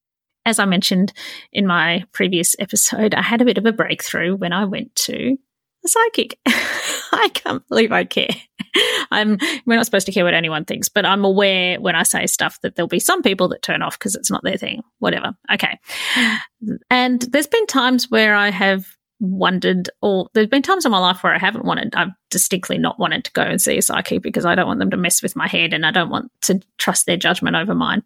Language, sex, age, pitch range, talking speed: English, female, 30-49, 185-240 Hz, 225 wpm